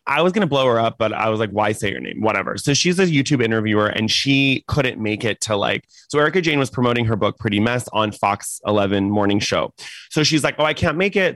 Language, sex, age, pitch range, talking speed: English, male, 30-49, 110-150 Hz, 265 wpm